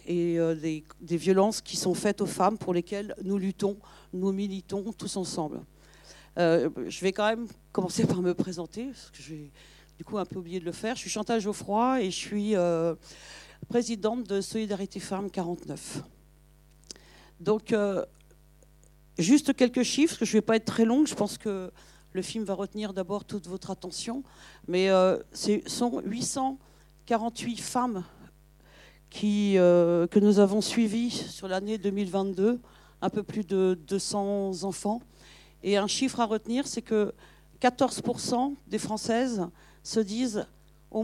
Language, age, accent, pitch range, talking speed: French, 50-69, French, 180-225 Hz, 160 wpm